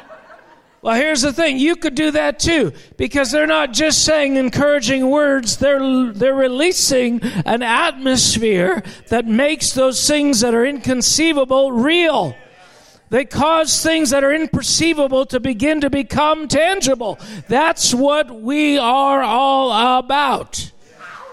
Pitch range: 230-285 Hz